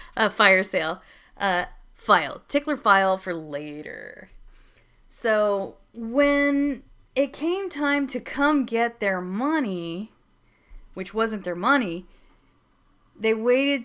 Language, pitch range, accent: English, 170-220 Hz, American